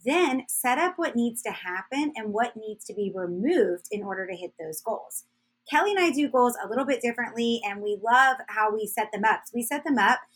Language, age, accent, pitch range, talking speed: English, 20-39, American, 200-265 Hz, 230 wpm